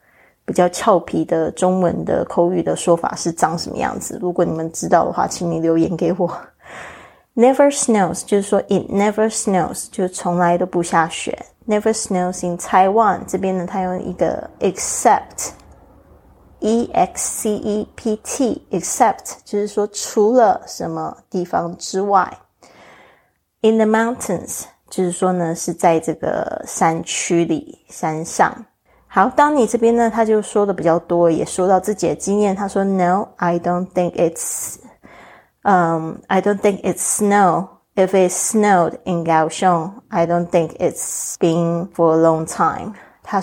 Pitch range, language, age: 170-205 Hz, Chinese, 20-39